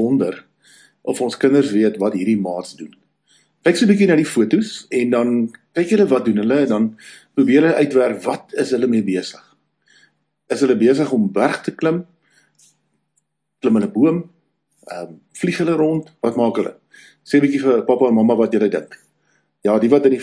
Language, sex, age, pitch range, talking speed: English, male, 50-69, 115-170 Hz, 185 wpm